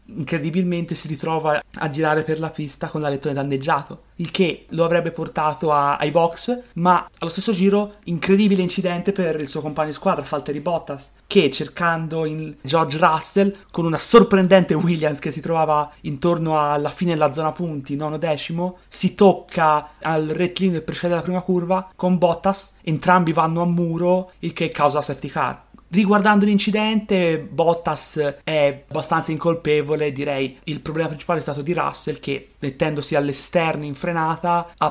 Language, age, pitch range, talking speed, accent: Italian, 30-49, 145-175 Hz, 160 wpm, native